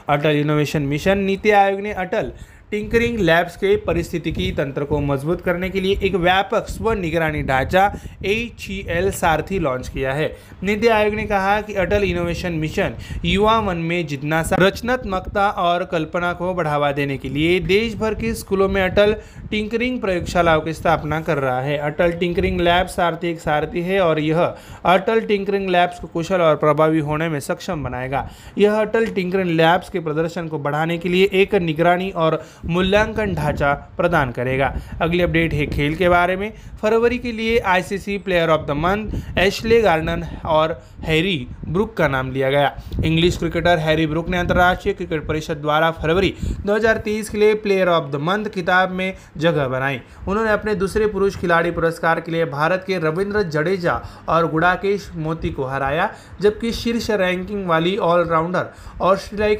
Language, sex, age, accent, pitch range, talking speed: Marathi, male, 30-49, native, 160-195 Hz, 170 wpm